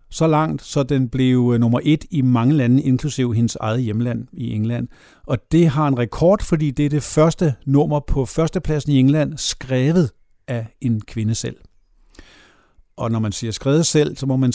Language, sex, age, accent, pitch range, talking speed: Danish, male, 50-69, native, 120-150 Hz, 185 wpm